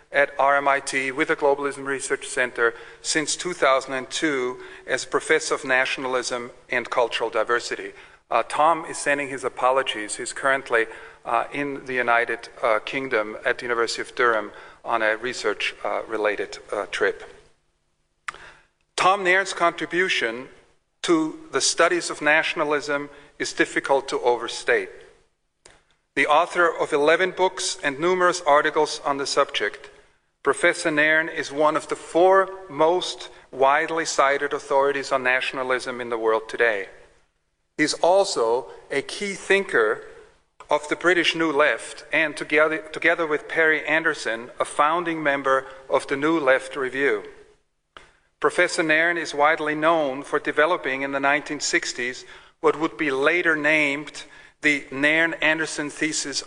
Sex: male